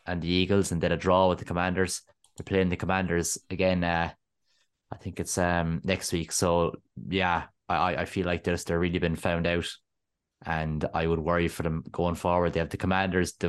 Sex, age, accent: male, 20-39, Irish